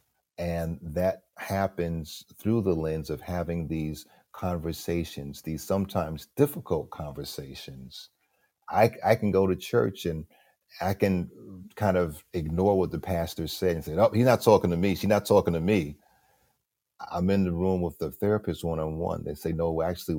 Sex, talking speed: male, 165 wpm